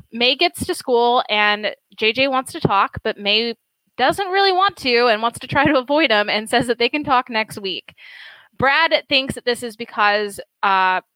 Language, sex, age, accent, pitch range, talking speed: English, female, 10-29, American, 205-265 Hz, 200 wpm